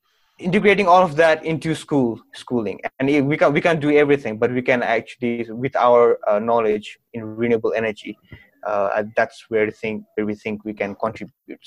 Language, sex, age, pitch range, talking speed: English, male, 20-39, 110-135 Hz, 180 wpm